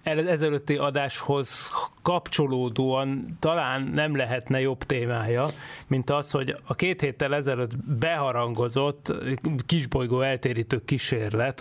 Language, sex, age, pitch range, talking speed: Hungarian, male, 30-49, 120-145 Hz, 100 wpm